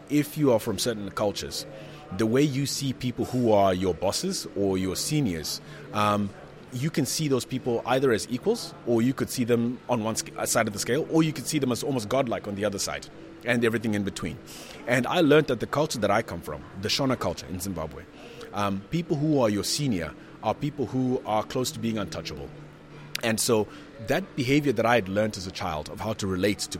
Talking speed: 220 wpm